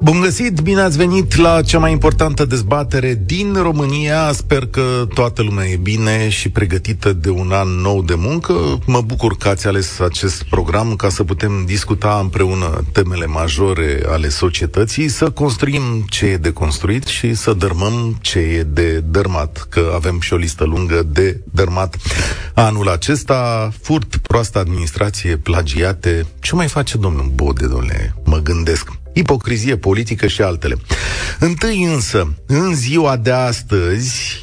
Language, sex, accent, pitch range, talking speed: Romanian, male, native, 90-125 Hz, 150 wpm